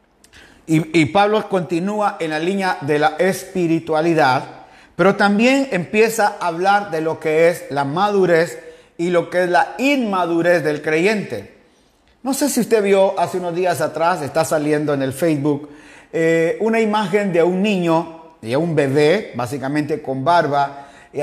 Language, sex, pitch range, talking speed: Spanish, male, 155-195 Hz, 160 wpm